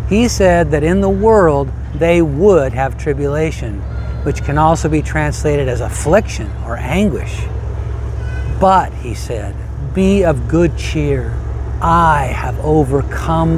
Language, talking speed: English, 130 wpm